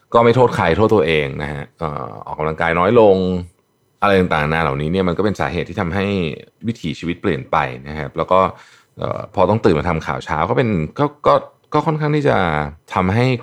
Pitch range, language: 85-120 Hz, Thai